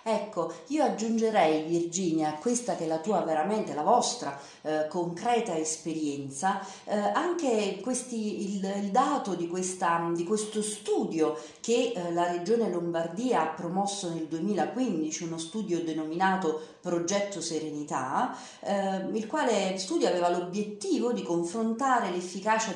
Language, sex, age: Italian, female, 40-59